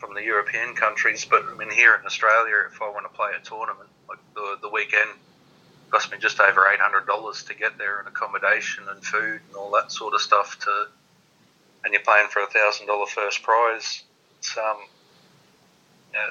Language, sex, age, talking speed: English, male, 40-59, 200 wpm